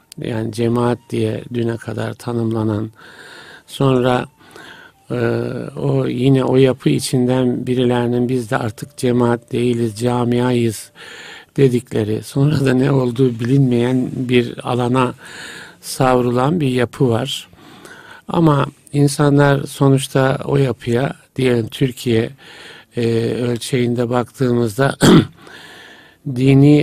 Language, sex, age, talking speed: Turkish, male, 50-69, 95 wpm